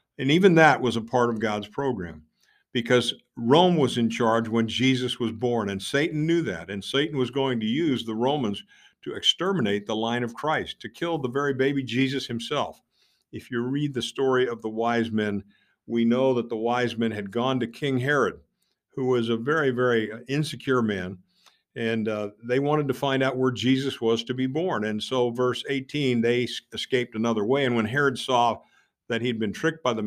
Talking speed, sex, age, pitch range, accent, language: 200 wpm, male, 50-69, 110-130 Hz, American, English